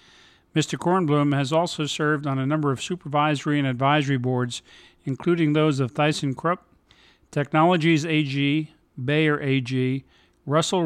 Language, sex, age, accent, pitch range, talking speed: English, male, 50-69, American, 130-155 Hz, 120 wpm